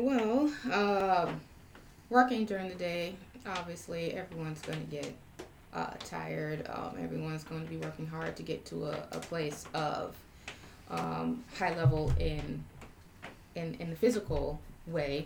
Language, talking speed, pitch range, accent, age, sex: English, 140 wpm, 145-185 Hz, American, 20-39, female